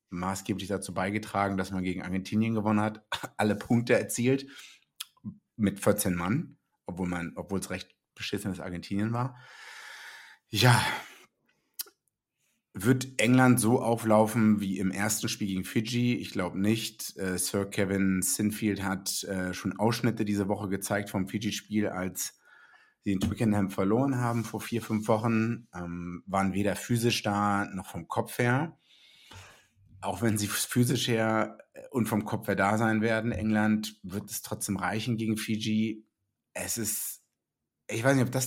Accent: German